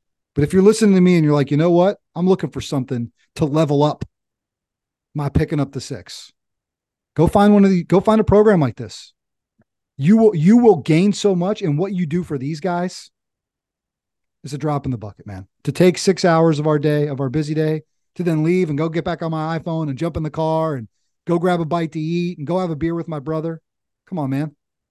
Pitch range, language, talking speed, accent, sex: 140-180 Hz, English, 240 wpm, American, male